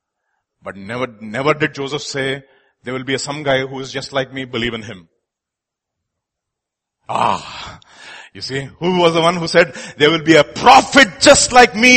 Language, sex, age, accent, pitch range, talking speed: English, male, 30-49, Indian, 125-170 Hz, 180 wpm